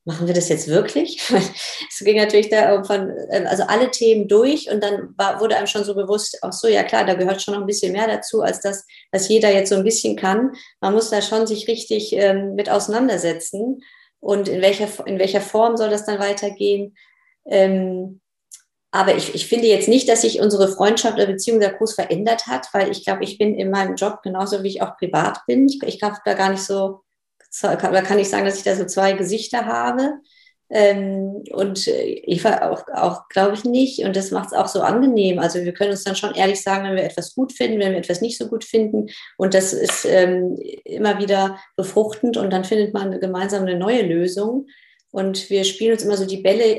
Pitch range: 195-220 Hz